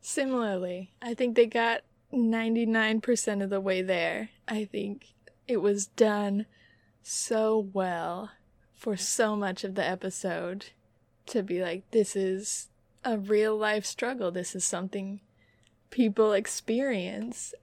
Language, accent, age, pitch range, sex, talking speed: English, American, 20-39, 195-240 Hz, female, 125 wpm